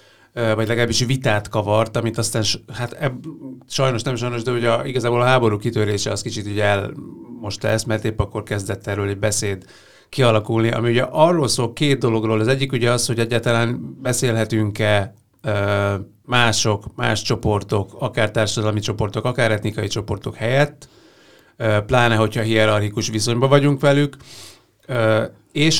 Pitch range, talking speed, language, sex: 105-125 Hz, 140 wpm, Hungarian, male